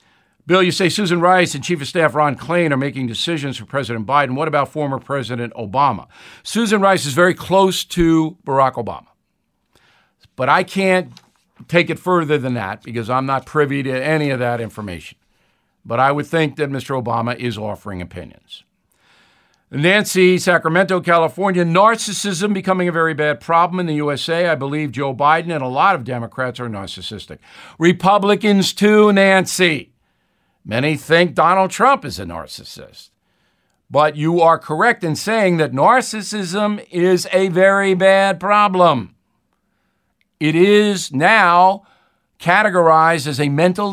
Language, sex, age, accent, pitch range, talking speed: English, male, 60-79, American, 135-185 Hz, 150 wpm